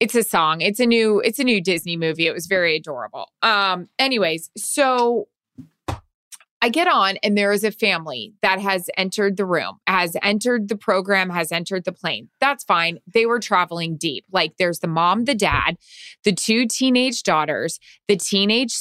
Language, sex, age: English, female, 20-39